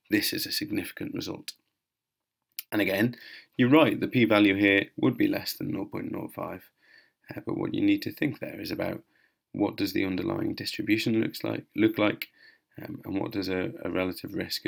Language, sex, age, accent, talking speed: English, male, 30-49, British, 180 wpm